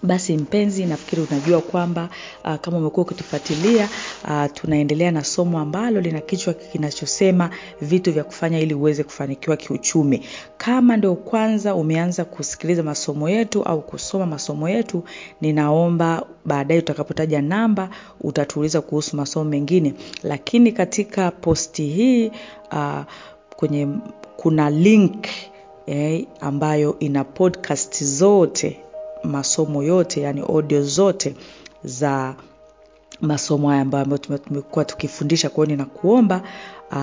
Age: 40-59